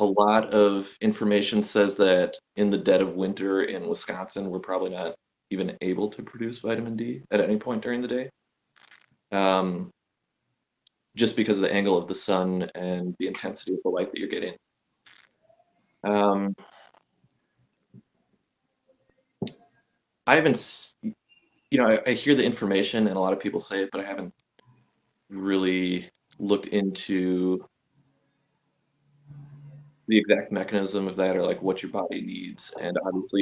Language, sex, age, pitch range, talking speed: English, male, 20-39, 95-110 Hz, 145 wpm